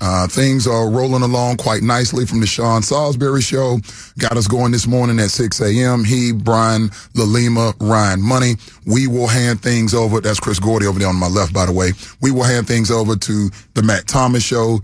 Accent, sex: American, male